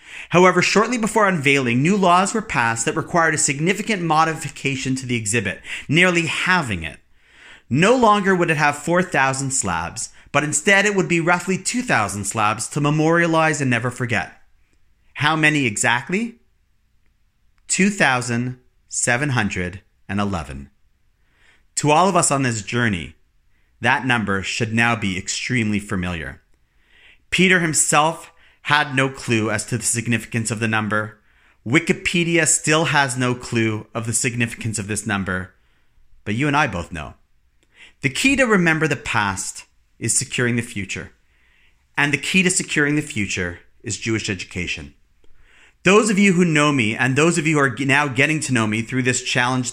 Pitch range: 105-160 Hz